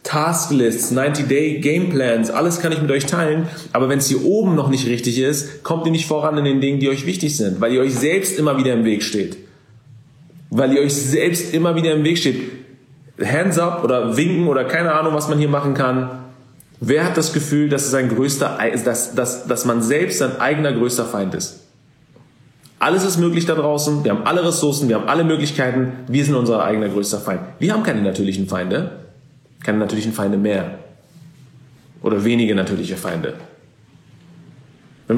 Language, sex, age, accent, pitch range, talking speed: German, male, 40-59, German, 115-155 Hz, 190 wpm